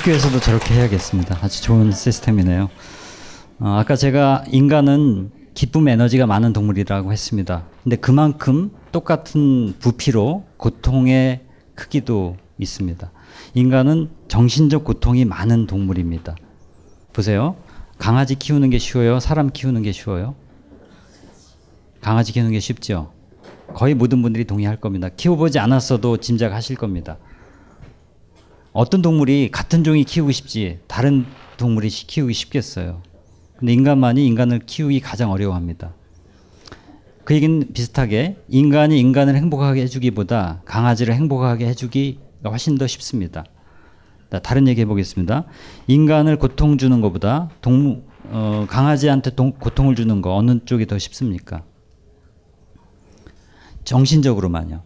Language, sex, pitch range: Korean, male, 100-135 Hz